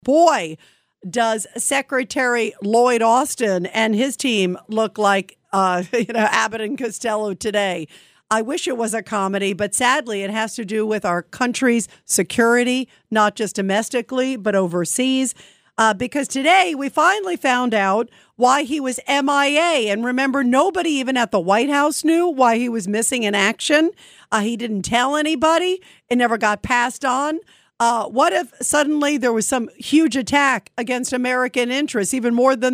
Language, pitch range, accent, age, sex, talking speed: English, 220-280 Hz, American, 50-69, female, 160 wpm